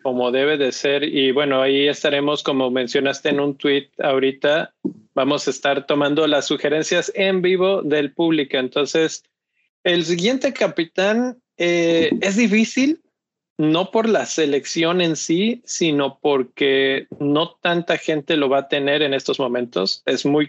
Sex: male